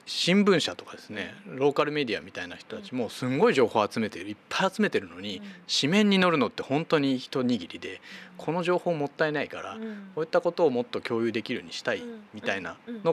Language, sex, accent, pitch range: Japanese, male, native, 145-235 Hz